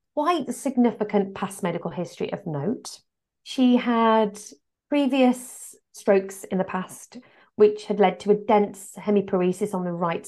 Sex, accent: female, British